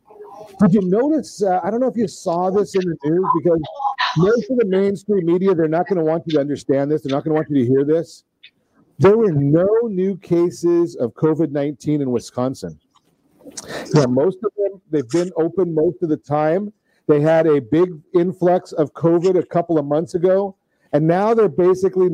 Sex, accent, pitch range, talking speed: male, American, 145-185 Hz, 200 wpm